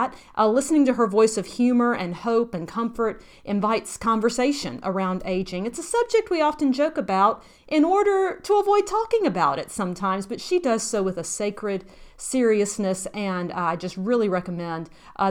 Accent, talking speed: American, 170 wpm